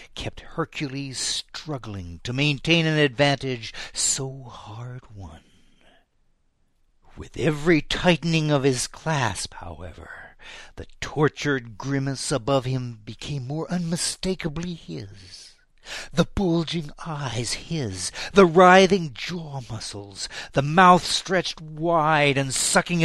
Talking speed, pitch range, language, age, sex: 105 wpm, 120-160 Hz, English, 60-79, male